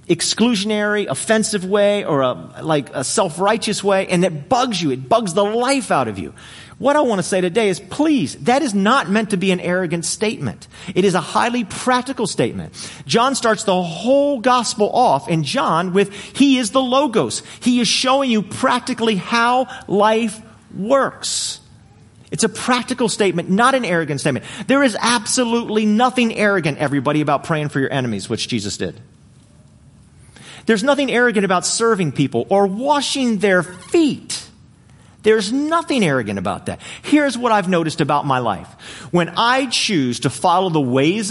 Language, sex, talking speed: English, male, 165 wpm